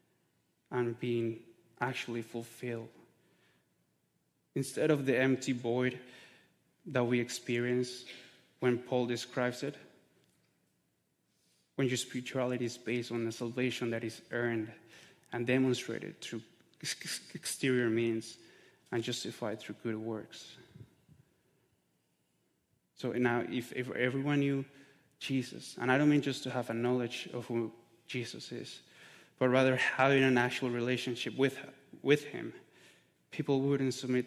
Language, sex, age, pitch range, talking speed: English, male, 20-39, 120-135 Hz, 120 wpm